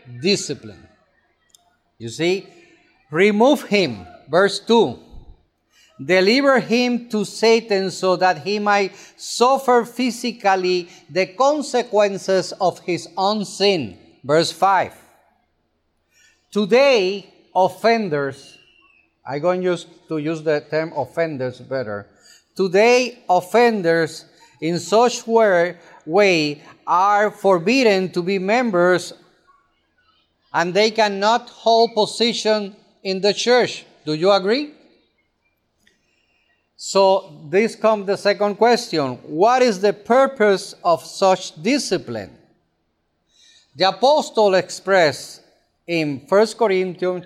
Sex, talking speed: male, 100 wpm